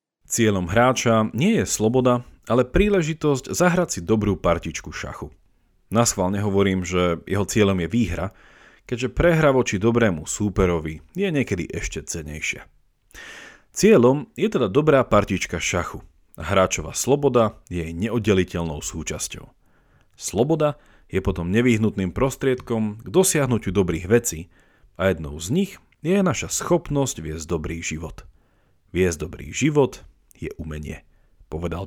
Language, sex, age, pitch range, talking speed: Slovak, male, 40-59, 90-130 Hz, 125 wpm